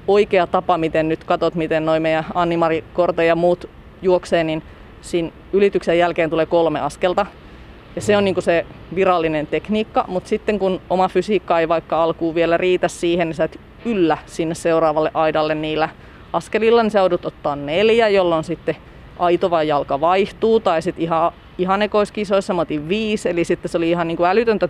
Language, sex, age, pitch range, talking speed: Finnish, female, 30-49, 160-185 Hz, 175 wpm